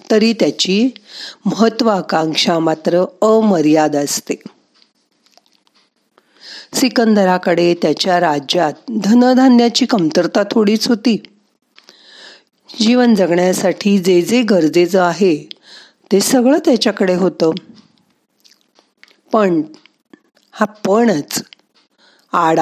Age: 50-69